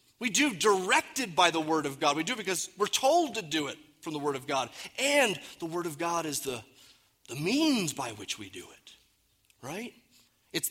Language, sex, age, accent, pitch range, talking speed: English, male, 30-49, American, 140-210 Hz, 205 wpm